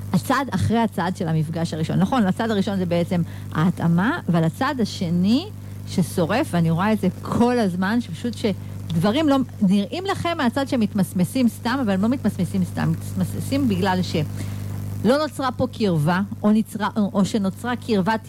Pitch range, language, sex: 155-225 Hz, Hebrew, female